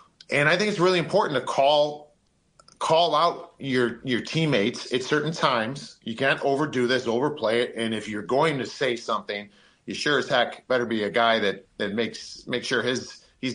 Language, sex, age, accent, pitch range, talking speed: English, male, 40-59, American, 120-160 Hz, 195 wpm